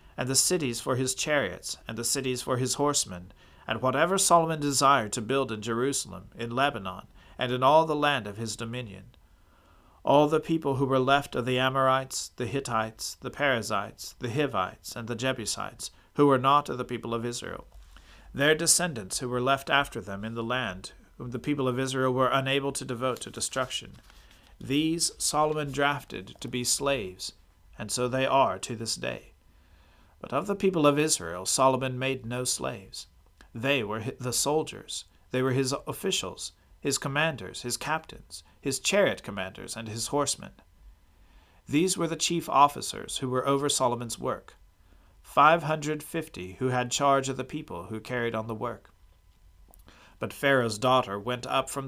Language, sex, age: English, male, 40-59